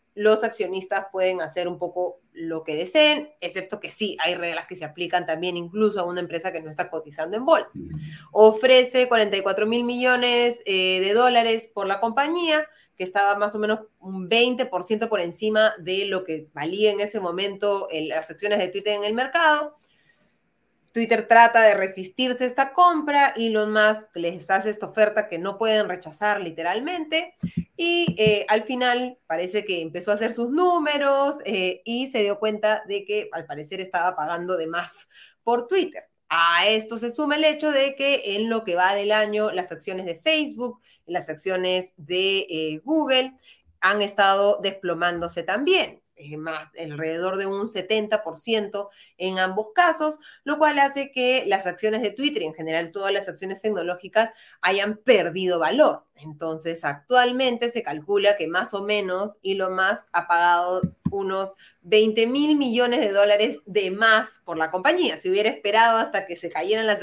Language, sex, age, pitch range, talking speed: Spanish, female, 20-39, 180-230 Hz, 170 wpm